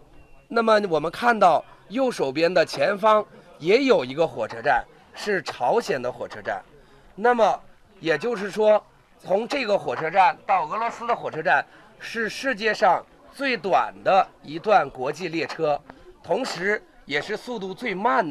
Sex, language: male, Chinese